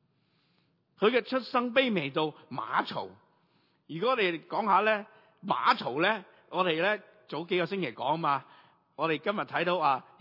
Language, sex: Chinese, male